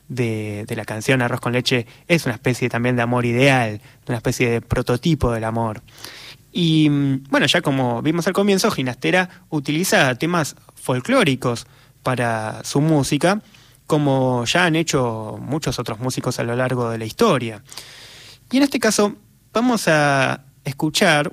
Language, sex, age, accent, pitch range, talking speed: Spanish, male, 20-39, Argentinian, 130-170 Hz, 150 wpm